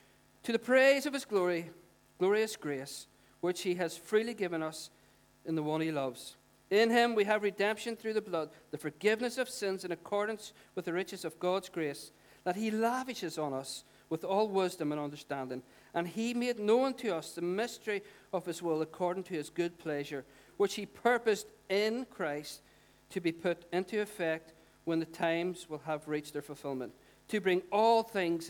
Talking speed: 185 wpm